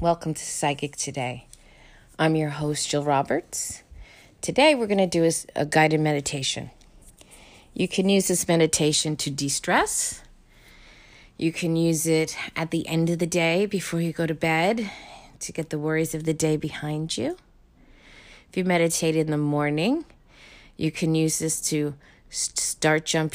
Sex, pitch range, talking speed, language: female, 150-175 Hz, 155 wpm, English